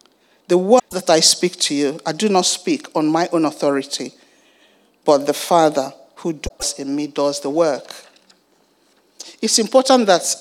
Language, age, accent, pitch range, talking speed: English, 50-69, Nigerian, 150-190 Hz, 160 wpm